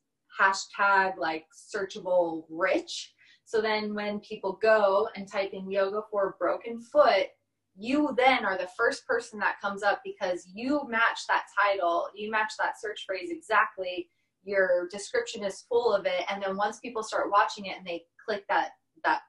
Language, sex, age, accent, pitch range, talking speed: English, female, 20-39, American, 195-240 Hz, 170 wpm